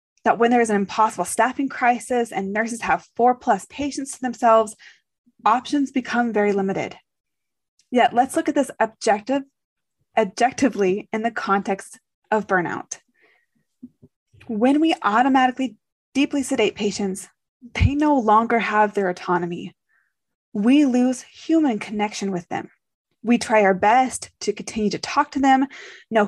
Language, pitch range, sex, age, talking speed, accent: English, 205-260 Hz, female, 20-39, 135 wpm, American